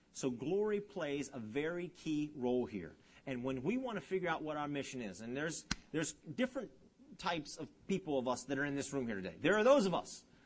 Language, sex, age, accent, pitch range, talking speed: English, male, 40-59, American, 135-195 Hz, 230 wpm